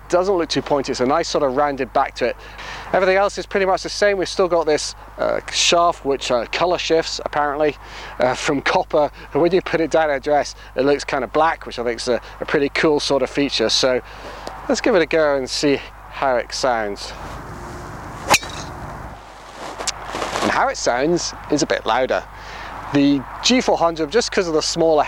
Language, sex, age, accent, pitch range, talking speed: English, male, 30-49, British, 135-170 Hz, 200 wpm